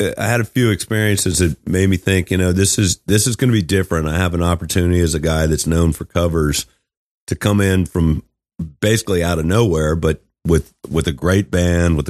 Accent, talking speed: American, 225 wpm